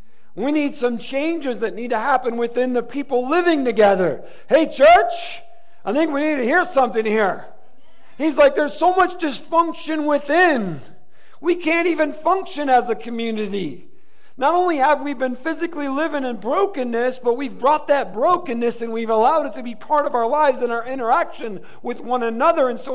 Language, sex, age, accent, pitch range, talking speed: English, male, 50-69, American, 195-305 Hz, 180 wpm